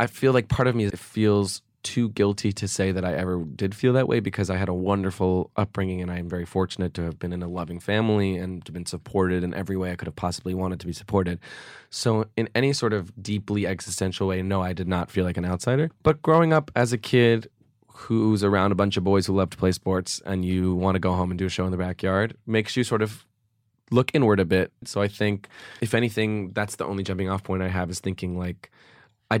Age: 20-39